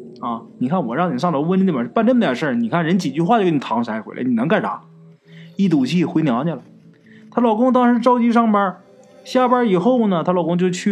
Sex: male